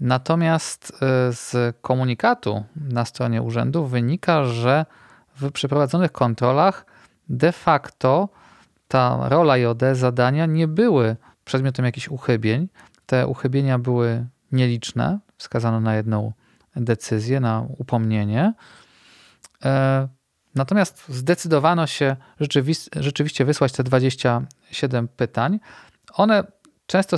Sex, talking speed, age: male, 95 wpm, 40-59